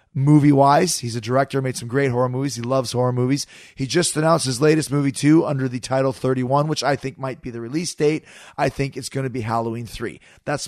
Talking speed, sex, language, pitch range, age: 230 wpm, male, English, 135-175 Hz, 30-49